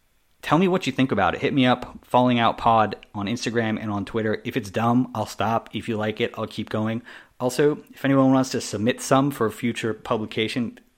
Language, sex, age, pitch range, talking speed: English, male, 30-49, 100-120 Hz, 225 wpm